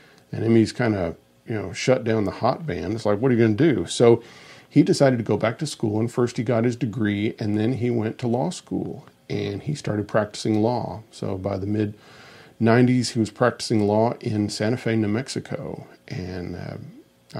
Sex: male